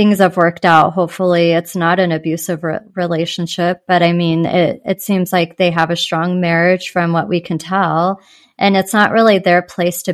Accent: American